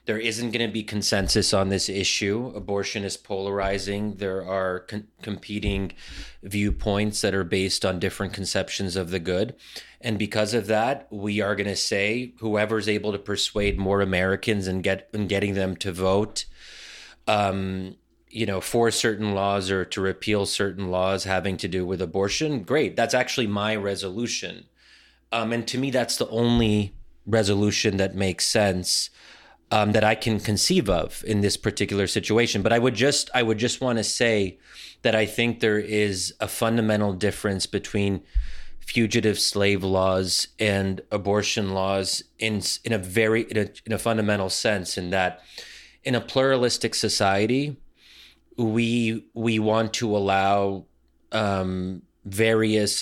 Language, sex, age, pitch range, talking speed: English, male, 30-49, 95-110 Hz, 155 wpm